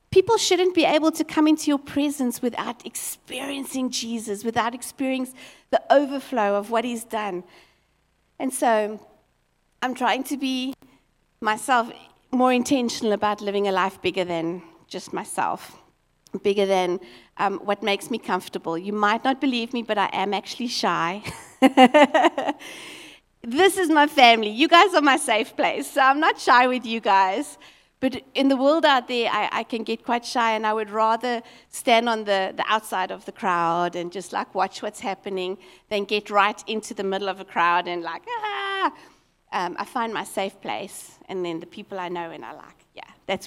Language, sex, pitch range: English, female, 195-275 Hz